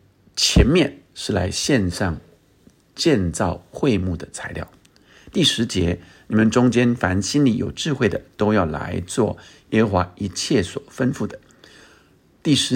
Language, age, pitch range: Chinese, 50-69, 90-115 Hz